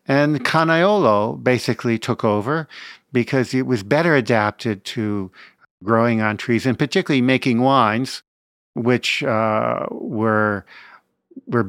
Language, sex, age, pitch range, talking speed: English, male, 50-69, 110-130 Hz, 115 wpm